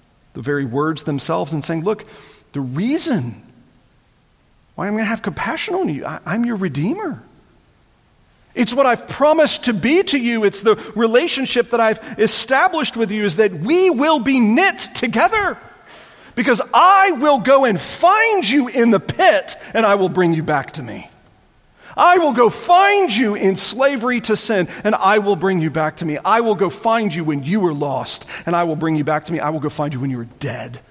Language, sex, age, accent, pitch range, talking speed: English, male, 40-59, American, 165-245 Hz, 200 wpm